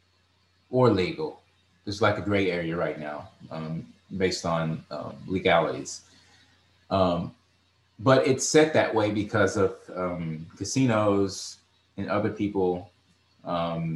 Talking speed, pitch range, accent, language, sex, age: 120 wpm, 90-100 Hz, American, English, male, 30-49